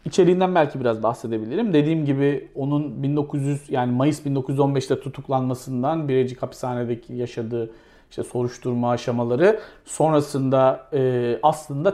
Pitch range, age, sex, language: 125-170 Hz, 40-59, male, Turkish